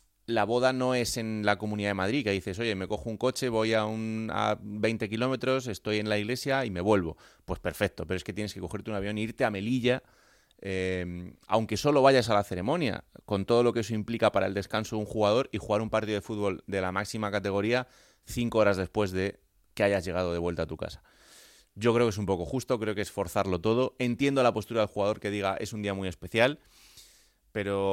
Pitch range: 95-115 Hz